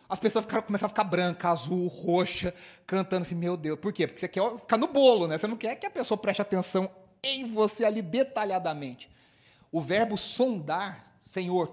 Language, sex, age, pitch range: Portuguese, male, 40-59, 160-230 Hz